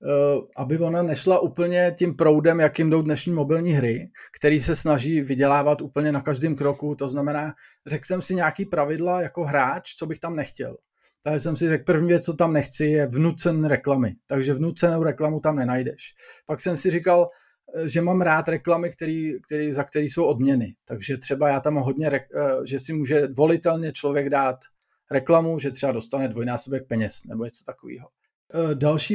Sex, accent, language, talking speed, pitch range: male, native, Czech, 175 wpm, 145-170 Hz